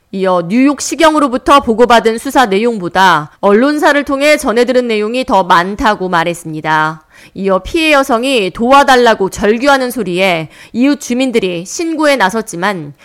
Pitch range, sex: 190-275 Hz, female